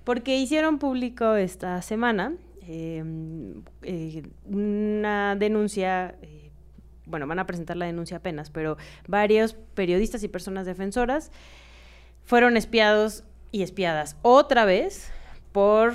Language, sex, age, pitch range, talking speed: Spanish, female, 20-39, 160-210 Hz, 115 wpm